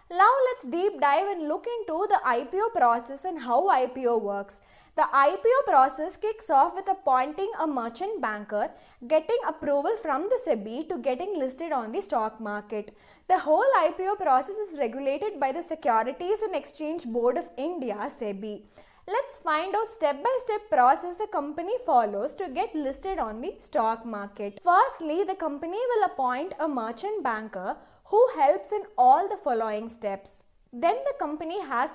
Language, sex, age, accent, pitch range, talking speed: English, female, 20-39, Indian, 250-390 Hz, 165 wpm